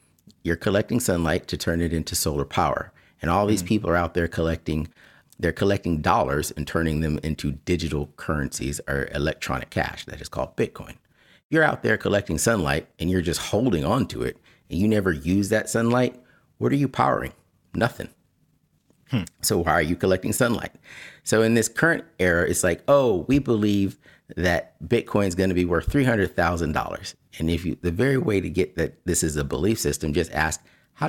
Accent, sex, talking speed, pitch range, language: American, male, 185 wpm, 80-100 Hz, English